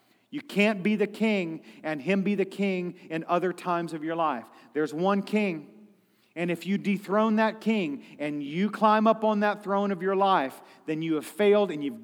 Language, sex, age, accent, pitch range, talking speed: English, male, 40-59, American, 140-190 Hz, 205 wpm